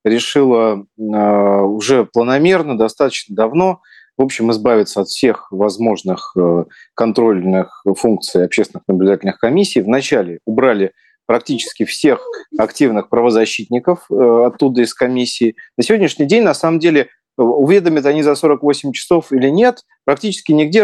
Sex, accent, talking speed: male, native, 115 wpm